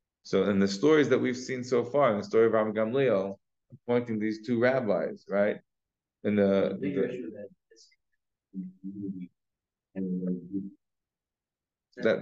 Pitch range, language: 100-130 Hz, English